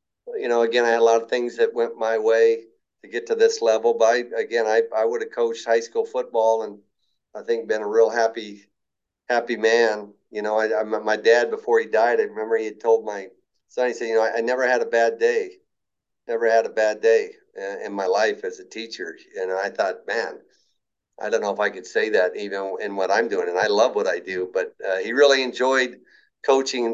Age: 50-69